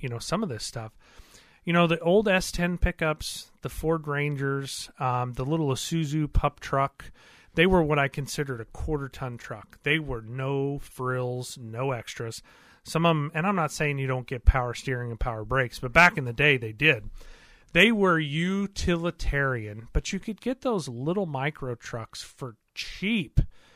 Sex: male